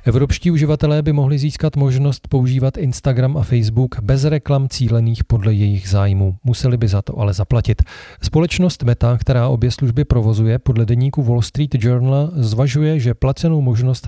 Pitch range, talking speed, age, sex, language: 110-140 Hz, 160 wpm, 40-59, male, Czech